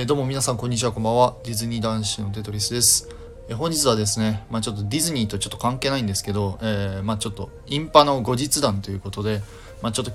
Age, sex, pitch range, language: 20-39, male, 100-125 Hz, Japanese